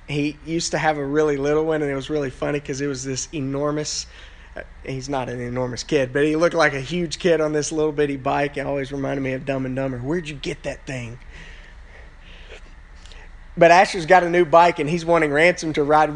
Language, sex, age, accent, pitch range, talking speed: English, male, 20-39, American, 135-195 Hz, 225 wpm